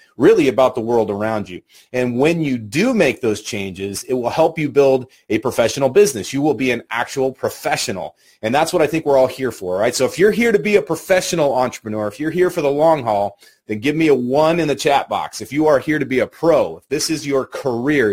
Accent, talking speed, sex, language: American, 250 wpm, male, English